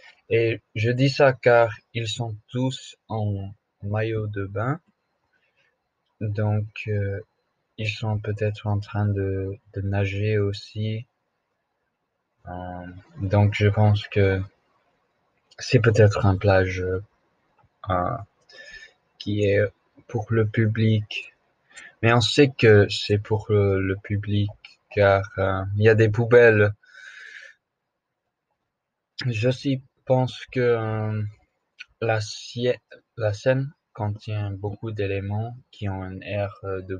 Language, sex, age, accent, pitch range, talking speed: French, male, 20-39, French, 100-115 Hz, 115 wpm